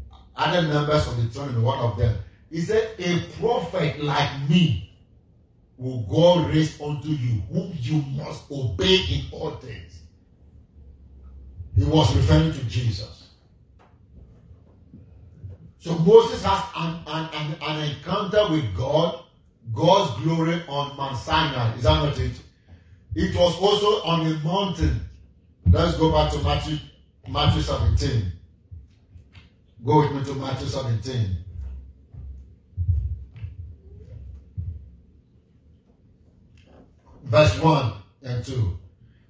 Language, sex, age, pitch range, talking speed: English, male, 40-59, 95-155 Hz, 110 wpm